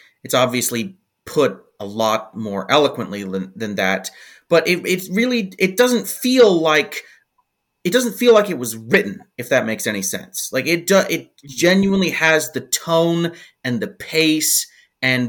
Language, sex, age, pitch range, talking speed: English, male, 30-49, 115-155 Hz, 165 wpm